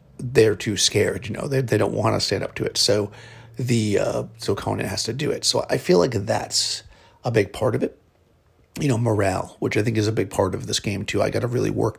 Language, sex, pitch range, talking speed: English, male, 105-120 Hz, 260 wpm